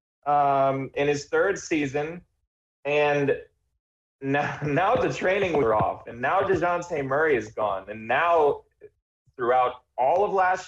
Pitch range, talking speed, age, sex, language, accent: 120-160 Hz, 135 wpm, 20-39, male, English, American